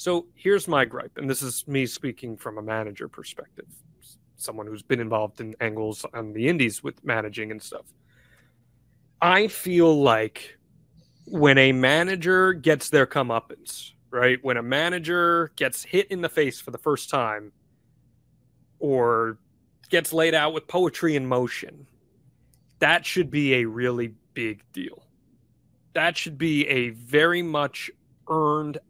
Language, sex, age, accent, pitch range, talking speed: English, male, 30-49, American, 130-180 Hz, 145 wpm